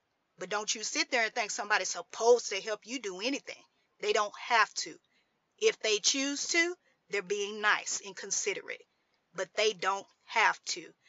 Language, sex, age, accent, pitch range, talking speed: English, female, 30-49, American, 200-300 Hz, 175 wpm